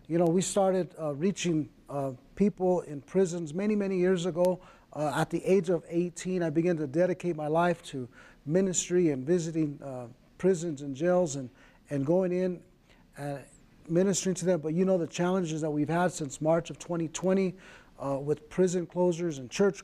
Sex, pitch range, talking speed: male, 150-185 Hz, 180 wpm